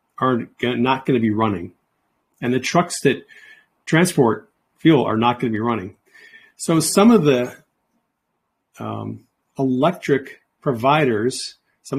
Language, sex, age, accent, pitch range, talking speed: English, male, 40-59, American, 120-155 Hz, 130 wpm